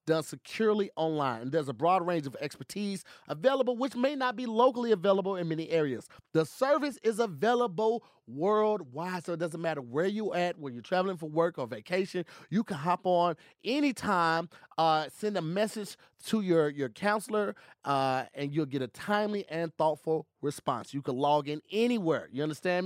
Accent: American